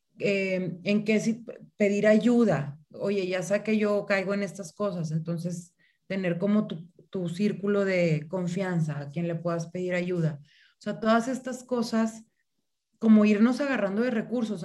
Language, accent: Spanish, Mexican